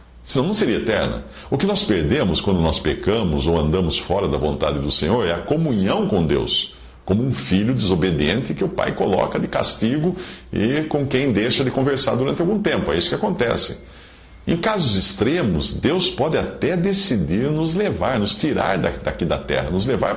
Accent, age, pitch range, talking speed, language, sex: Brazilian, 50-69, 70-110 Hz, 185 wpm, Portuguese, male